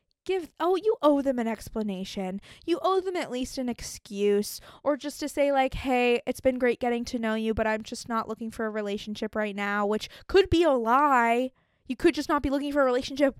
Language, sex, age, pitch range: English, female, 20-39, 220-285 Hz